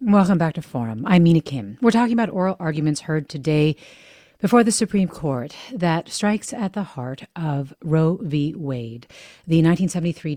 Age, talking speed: 40-59, 170 wpm